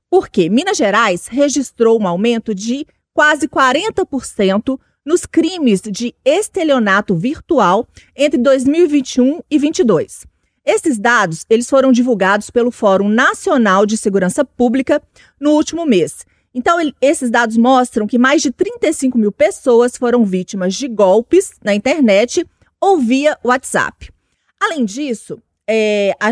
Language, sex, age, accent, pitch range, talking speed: Portuguese, female, 30-49, Brazilian, 220-290 Hz, 120 wpm